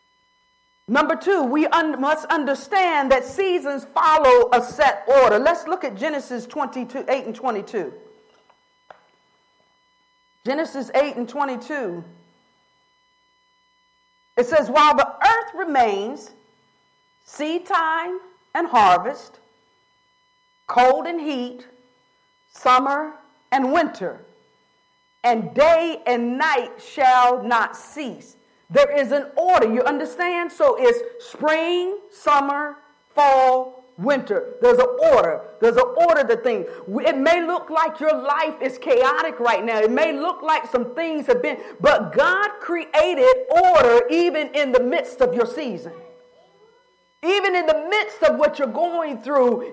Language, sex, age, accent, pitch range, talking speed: English, female, 50-69, American, 270-440 Hz, 125 wpm